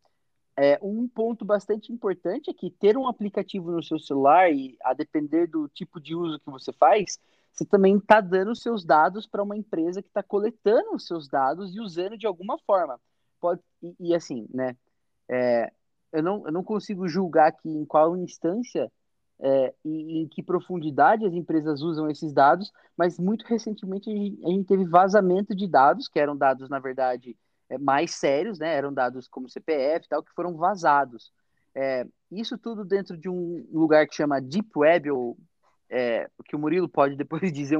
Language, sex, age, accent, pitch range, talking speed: Portuguese, male, 20-39, Brazilian, 155-205 Hz, 185 wpm